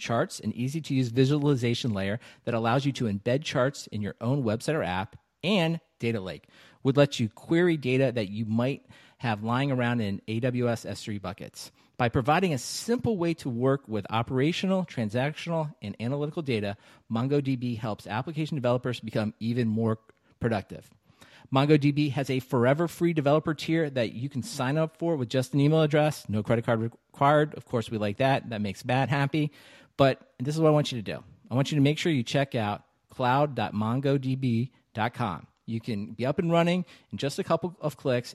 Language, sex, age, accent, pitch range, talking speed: English, male, 40-59, American, 115-145 Hz, 185 wpm